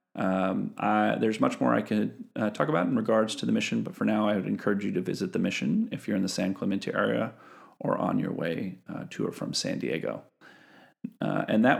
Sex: male